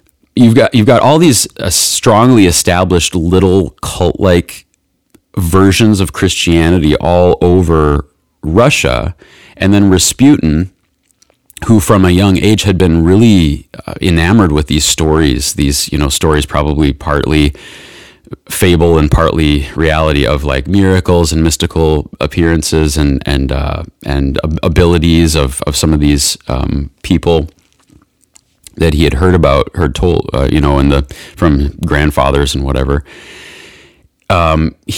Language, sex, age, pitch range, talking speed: English, male, 30-49, 75-95 Hz, 130 wpm